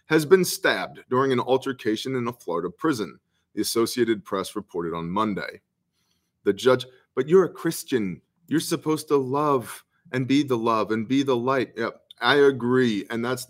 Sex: male